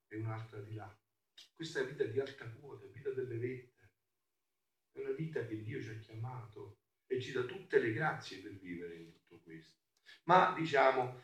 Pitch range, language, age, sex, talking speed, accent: 105-160 Hz, Italian, 50-69, male, 175 wpm, native